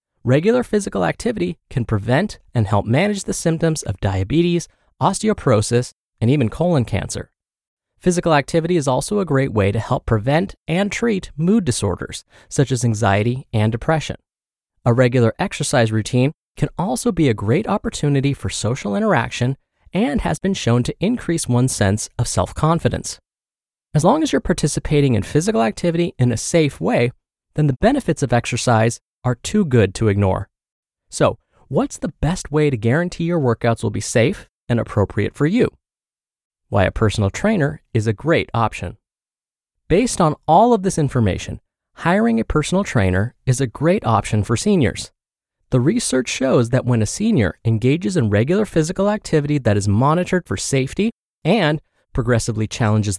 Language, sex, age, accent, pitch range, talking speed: English, male, 20-39, American, 115-175 Hz, 160 wpm